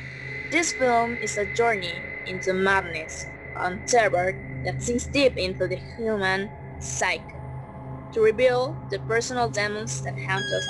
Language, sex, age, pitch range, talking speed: English, female, 20-39, 175-240 Hz, 135 wpm